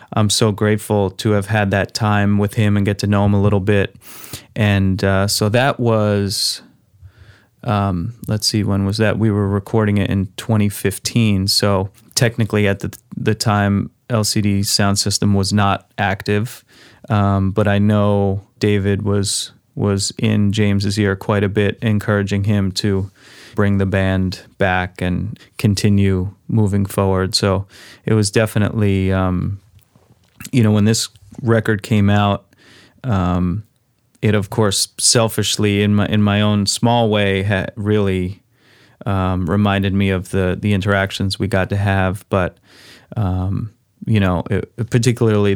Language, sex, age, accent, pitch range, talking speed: English, male, 20-39, American, 100-110 Hz, 150 wpm